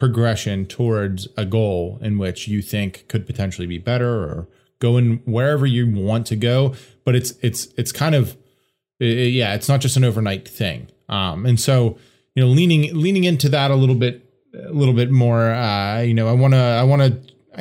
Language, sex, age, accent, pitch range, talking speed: English, male, 20-39, American, 115-135 Hz, 195 wpm